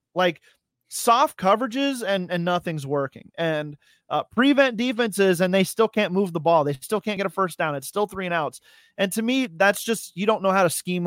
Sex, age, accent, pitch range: male, 30-49, American, 155-205 Hz